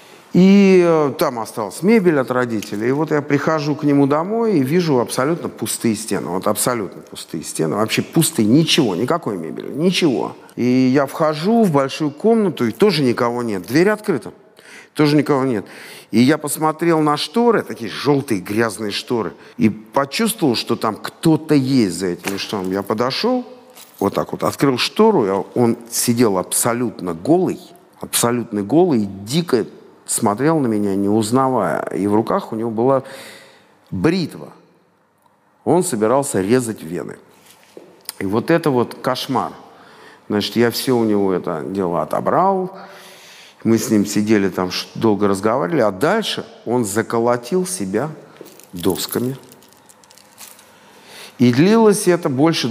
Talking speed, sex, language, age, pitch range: 140 wpm, male, Russian, 50-69, 110-160 Hz